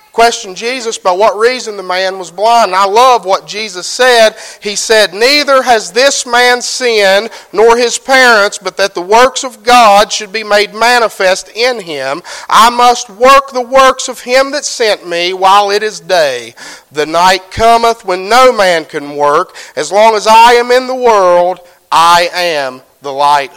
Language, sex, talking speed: English, male, 180 wpm